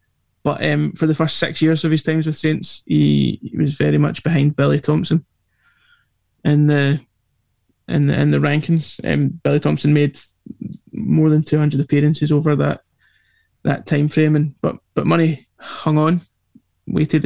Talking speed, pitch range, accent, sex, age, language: 165 wpm, 145-160 Hz, British, male, 20-39, English